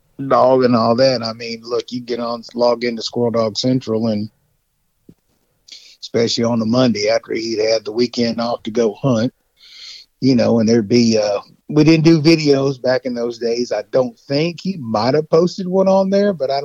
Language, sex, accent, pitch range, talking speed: English, male, American, 110-145 Hz, 200 wpm